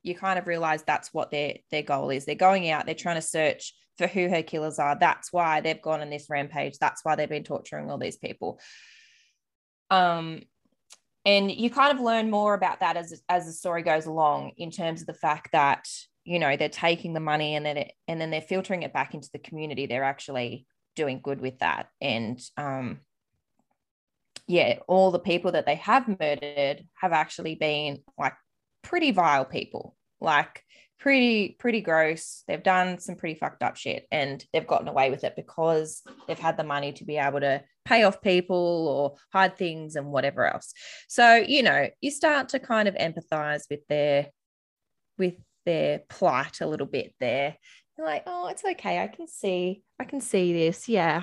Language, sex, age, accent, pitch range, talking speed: English, female, 20-39, Australian, 150-190 Hz, 195 wpm